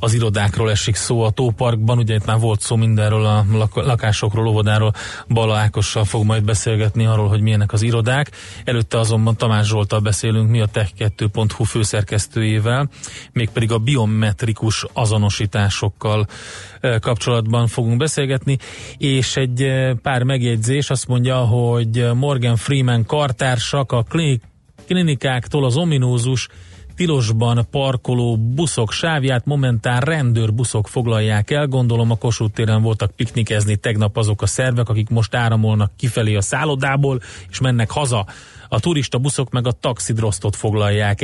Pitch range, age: 110-130 Hz, 30-49